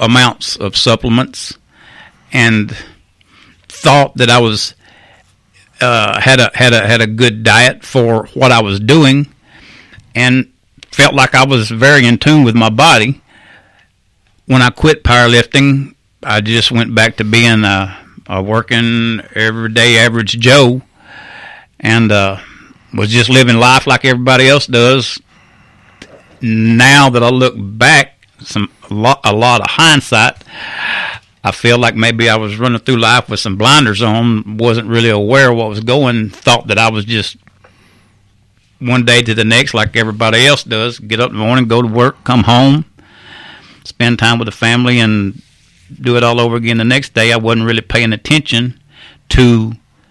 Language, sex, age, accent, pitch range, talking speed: English, male, 60-79, American, 110-125 Hz, 160 wpm